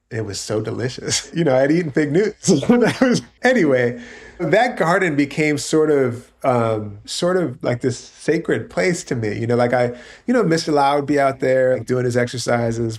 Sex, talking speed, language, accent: male, 205 wpm, English, American